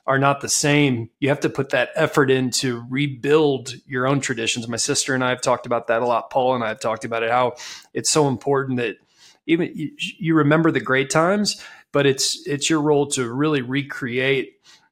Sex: male